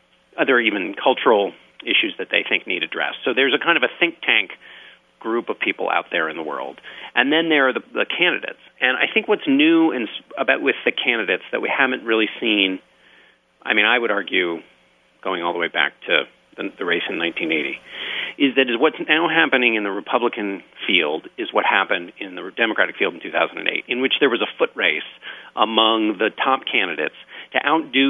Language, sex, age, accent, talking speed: English, male, 40-59, American, 205 wpm